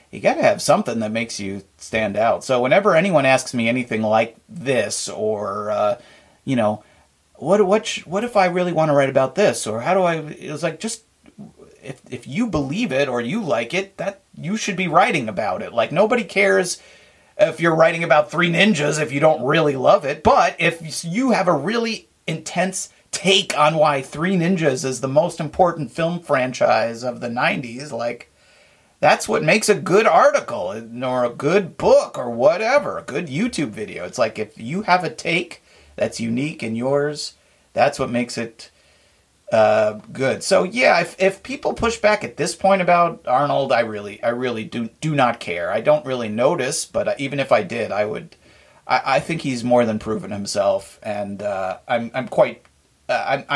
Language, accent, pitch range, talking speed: English, American, 120-185 Hz, 195 wpm